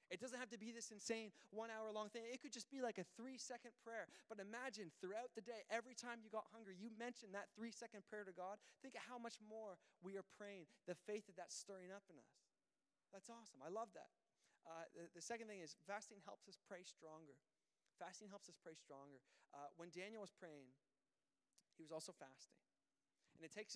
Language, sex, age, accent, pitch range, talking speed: English, male, 20-39, American, 175-225 Hz, 210 wpm